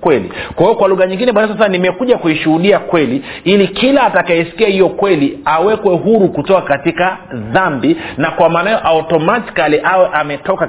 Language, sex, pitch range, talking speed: Swahili, male, 150-195 Hz, 155 wpm